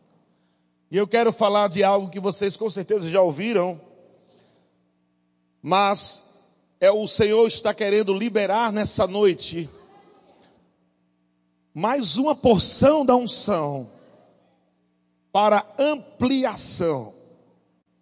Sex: male